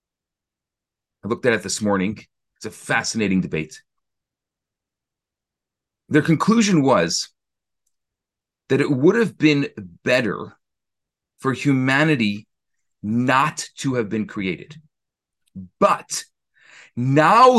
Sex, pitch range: male, 145-205 Hz